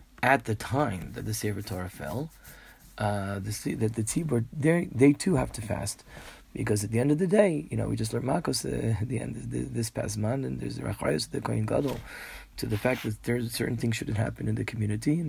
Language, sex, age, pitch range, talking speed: English, male, 30-49, 110-145 Hz, 240 wpm